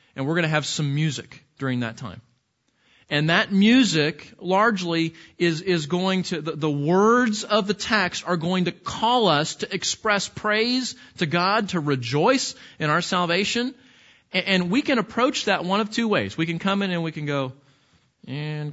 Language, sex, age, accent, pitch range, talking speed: English, male, 40-59, American, 150-215 Hz, 185 wpm